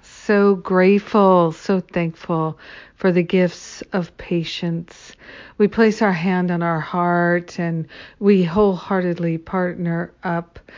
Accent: American